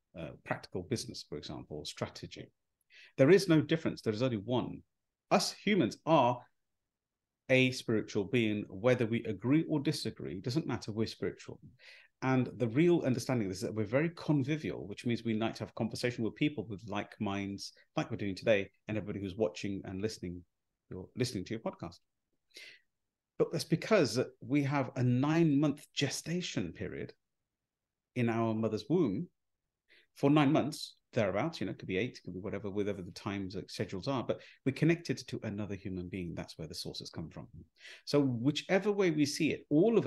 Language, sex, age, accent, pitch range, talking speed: English, male, 40-59, British, 105-140 Hz, 180 wpm